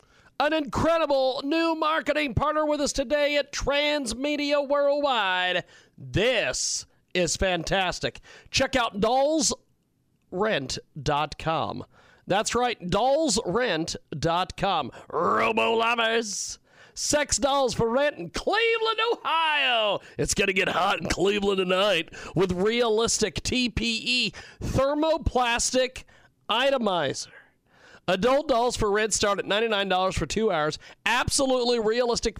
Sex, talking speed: male, 100 wpm